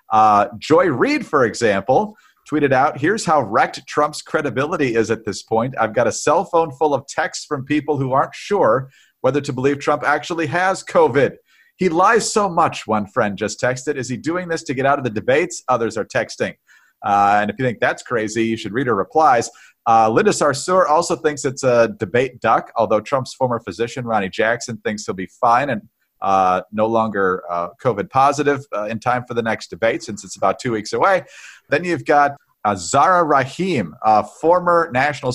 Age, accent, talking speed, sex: 40-59, American, 200 wpm, male